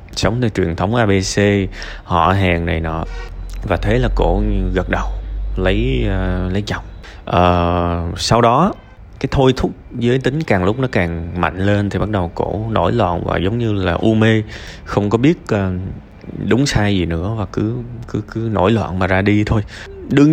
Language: Vietnamese